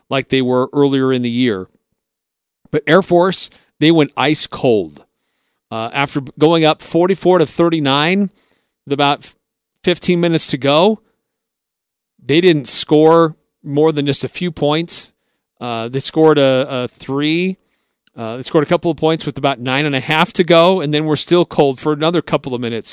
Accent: American